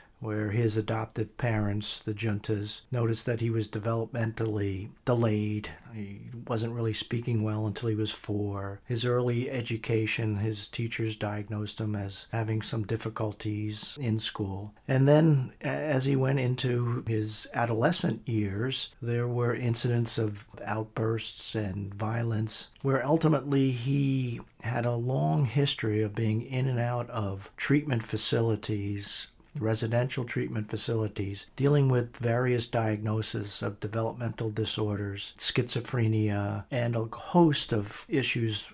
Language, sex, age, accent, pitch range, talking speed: English, male, 50-69, American, 110-120 Hz, 125 wpm